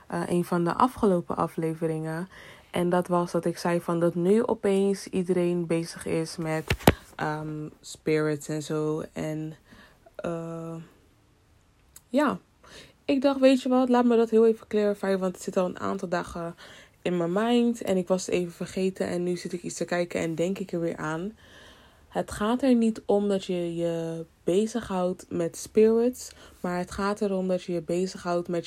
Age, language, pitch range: 20-39, Dutch, 170-195 Hz